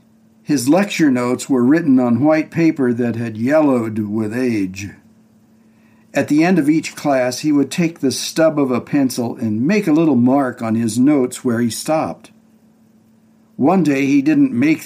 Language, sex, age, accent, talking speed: English, male, 60-79, American, 175 wpm